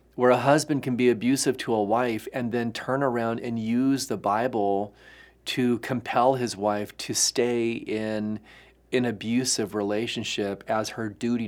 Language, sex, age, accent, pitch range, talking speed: English, male, 40-59, American, 105-130 Hz, 155 wpm